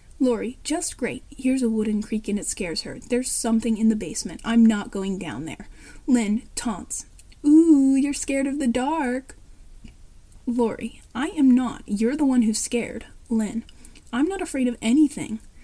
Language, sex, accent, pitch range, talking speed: English, female, American, 225-280 Hz, 170 wpm